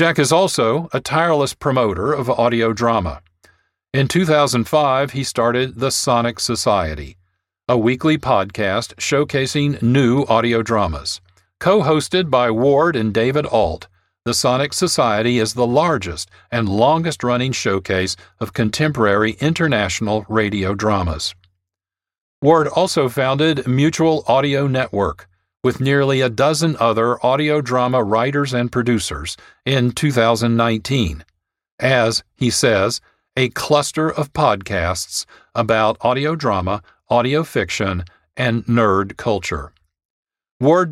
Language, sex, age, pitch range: English, male, 50-69, 100-135 Hz